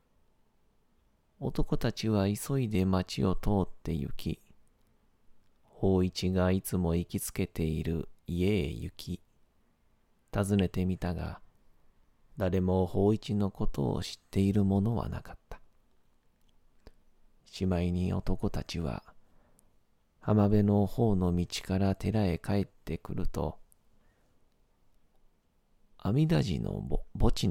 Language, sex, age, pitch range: Japanese, male, 40-59, 85-100 Hz